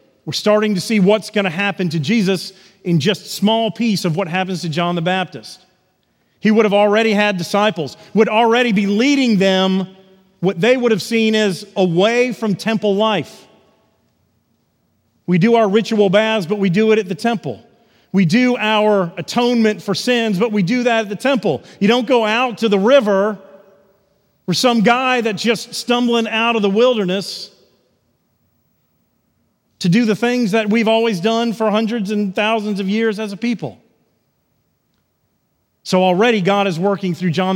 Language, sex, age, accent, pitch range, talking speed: English, male, 40-59, American, 185-225 Hz, 175 wpm